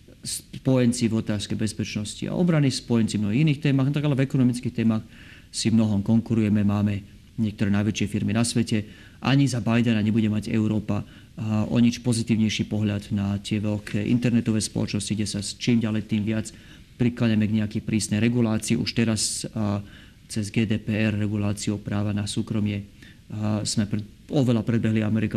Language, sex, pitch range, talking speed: Slovak, male, 105-120 Hz, 150 wpm